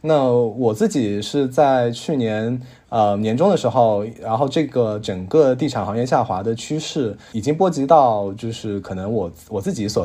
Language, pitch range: Chinese, 100-130 Hz